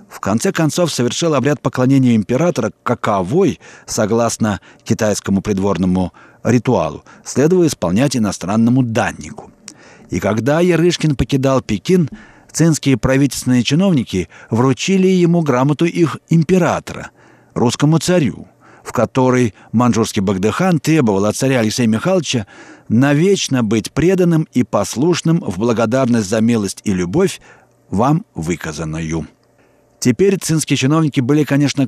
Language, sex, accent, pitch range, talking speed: Russian, male, native, 110-155 Hz, 110 wpm